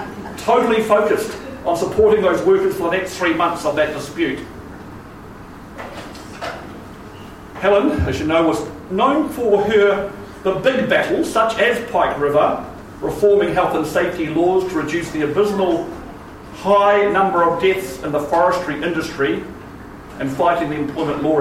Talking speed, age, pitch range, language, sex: 140 wpm, 50-69, 180-225 Hz, English, male